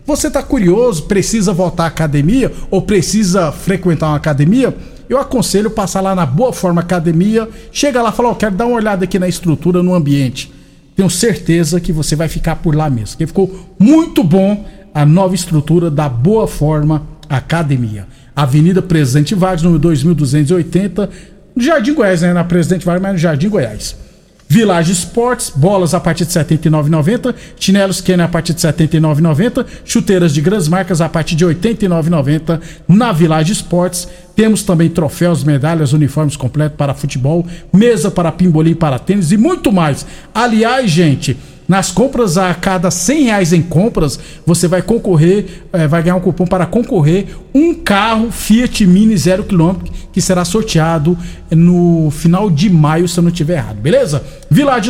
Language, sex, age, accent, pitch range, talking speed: Portuguese, male, 50-69, Brazilian, 160-200 Hz, 165 wpm